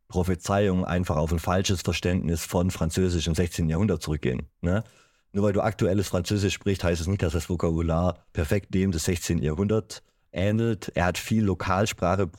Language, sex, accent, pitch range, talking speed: German, male, German, 90-105 Hz, 165 wpm